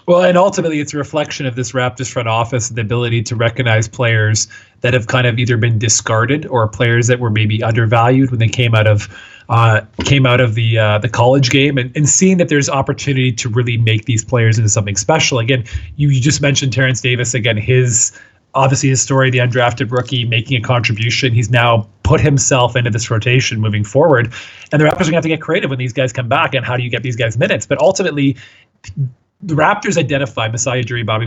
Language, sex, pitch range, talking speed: English, male, 115-140 Hz, 220 wpm